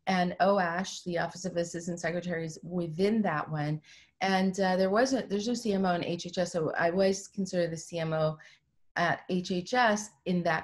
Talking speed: 165 wpm